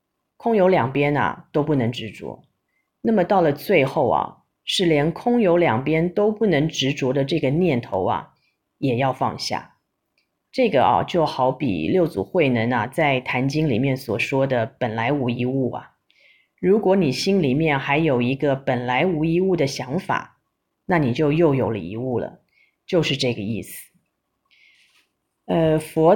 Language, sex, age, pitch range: Chinese, female, 30-49, 130-170 Hz